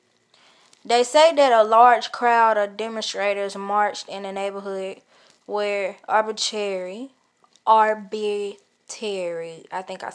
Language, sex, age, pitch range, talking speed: English, female, 10-29, 200-240 Hz, 105 wpm